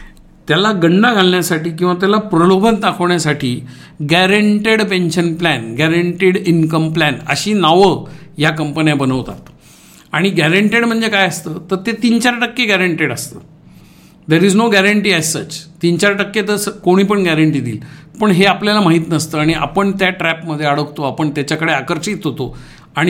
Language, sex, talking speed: English, male, 85 wpm